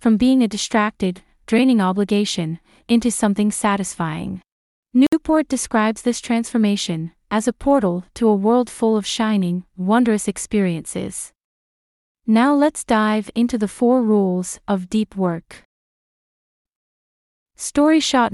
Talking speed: 120 wpm